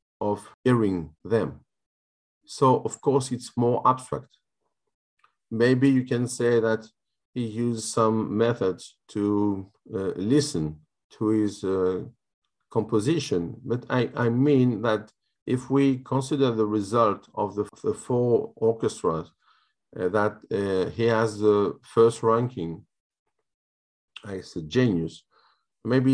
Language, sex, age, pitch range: Greek, male, 50-69, 100-120 Hz